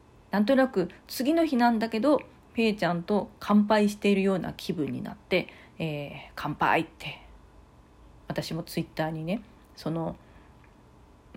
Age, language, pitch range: 40-59, Japanese, 160-220 Hz